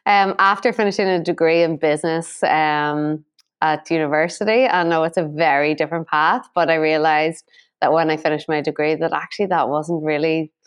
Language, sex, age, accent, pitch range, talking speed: English, female, 20-39, Irish, 155-185 Hz, 175 wpm